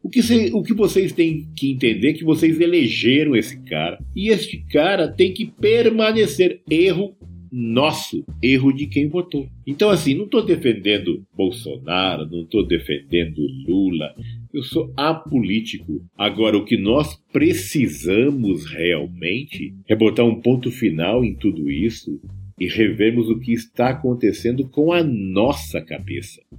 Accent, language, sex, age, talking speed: Brazilian, Portuguese, male, 50-69, 140 wpm